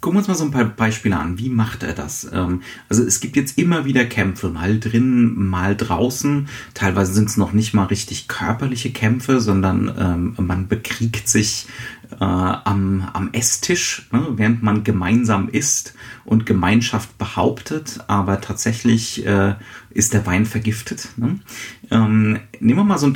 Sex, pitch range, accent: male, 105-125 Hz, German